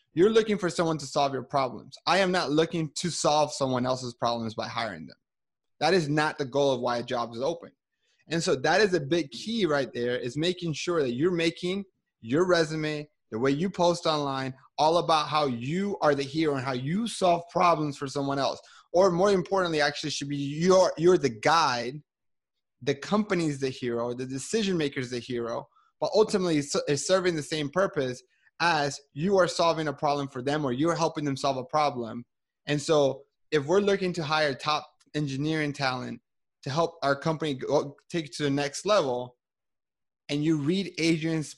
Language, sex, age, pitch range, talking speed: English, male, 30-49, 135-175 Hz, 190 wpm